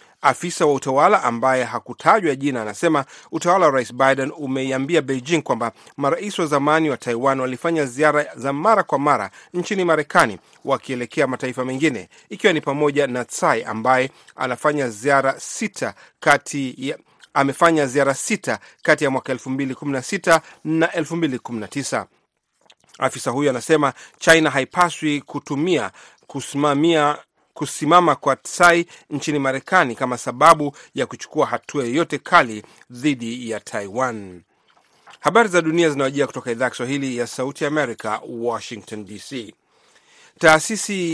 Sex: male